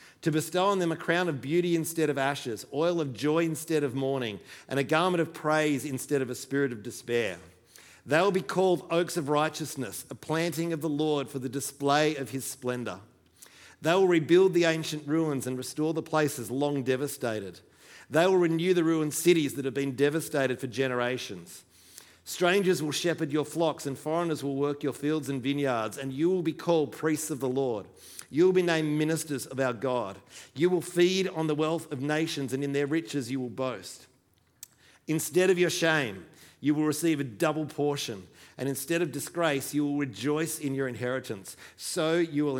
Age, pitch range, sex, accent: 40-59, 135-160 Hz, male, Australian